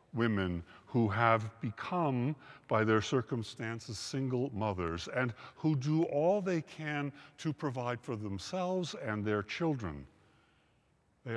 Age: 60-79